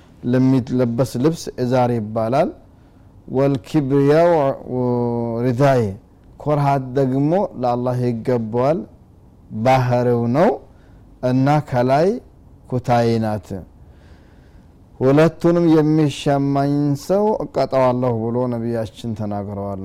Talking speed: 75 wpm